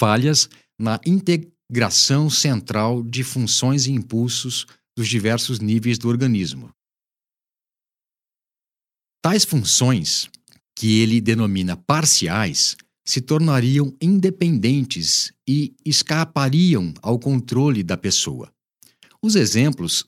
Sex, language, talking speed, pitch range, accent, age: male, Portuguese, 90 wpm, 105-150 Hz, Brazilian, 50-69